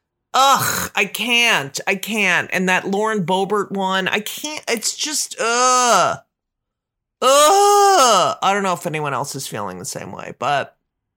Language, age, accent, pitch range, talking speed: English, 40-59, American, 135-195 Hz, 150 wpm